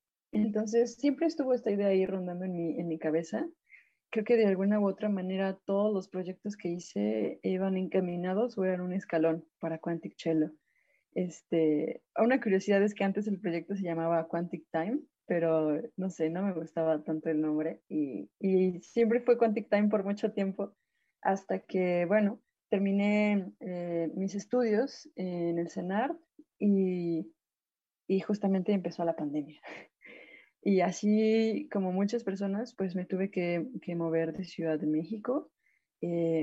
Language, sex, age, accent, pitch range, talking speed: Spanish, female, 20-39, Mexican, 170-215 Hz, 155 wpm